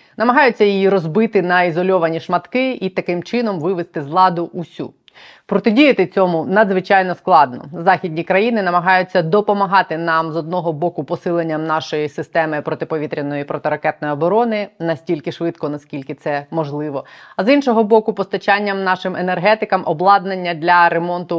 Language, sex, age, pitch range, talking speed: Ukrainian, female, 20-39, 165-205 Hz, 135 wpm